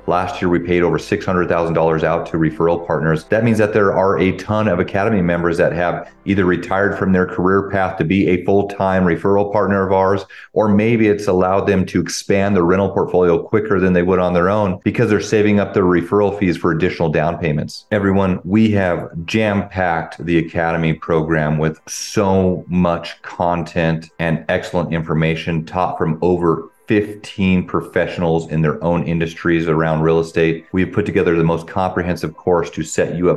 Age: 30-49